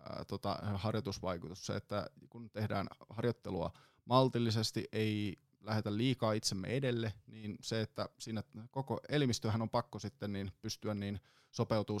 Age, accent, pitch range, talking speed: 20-39, native, 100-120 Hz, 130 wpm